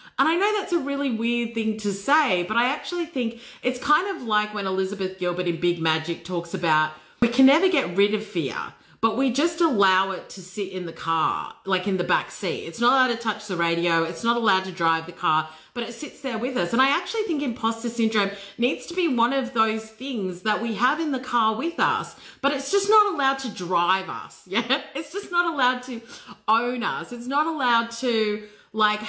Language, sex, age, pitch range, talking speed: English, female, 30-49, 200-275 Hz, 225 wpm